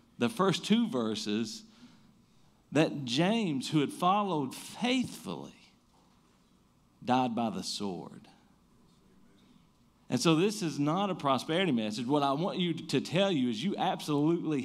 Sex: male